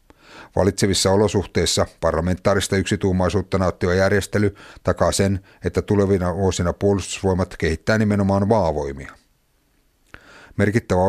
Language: Finnish